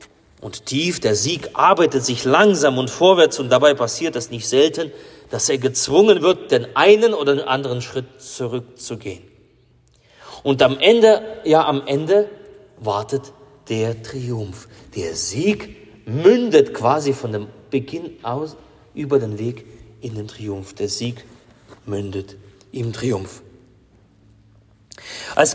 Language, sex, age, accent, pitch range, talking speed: German, male, 30-49, German, 115-145 Hz, 125 wpm